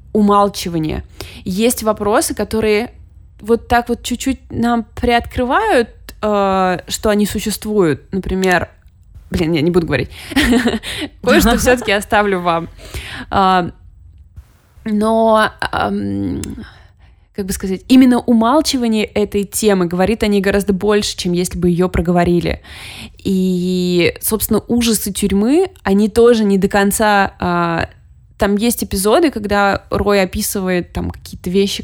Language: Russian